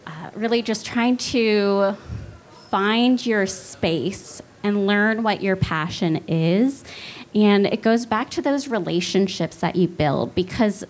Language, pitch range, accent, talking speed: English, 180-230 Hz, American, 130 wpm